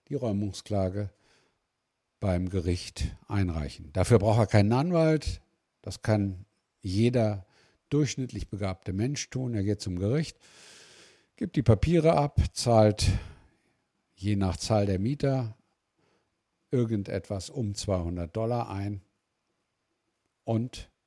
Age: 60-79